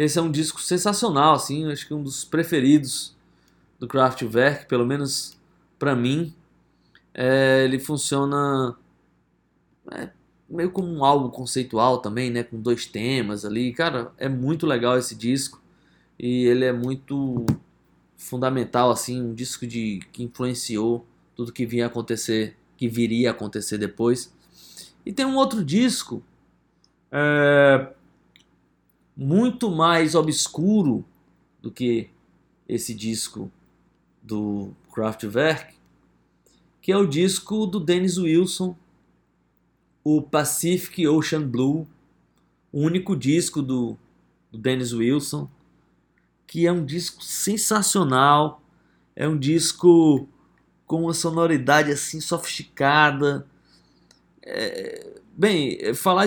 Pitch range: 120-165 Hz